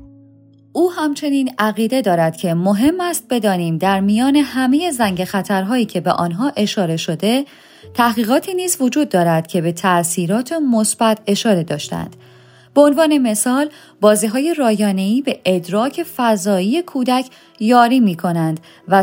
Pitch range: 180-270 Hz